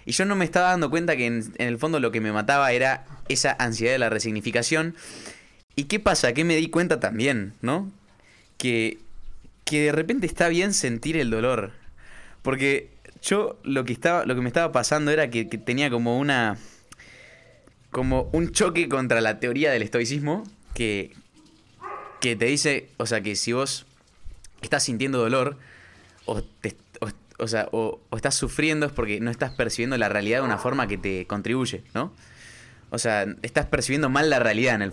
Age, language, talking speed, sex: 20-39, Spanish, 185 wpm, male